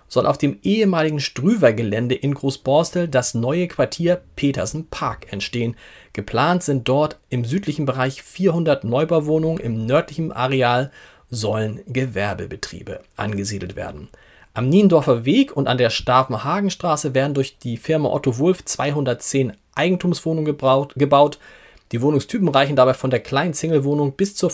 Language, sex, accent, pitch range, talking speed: German, male, German, 130-165 Hz, 130 wpm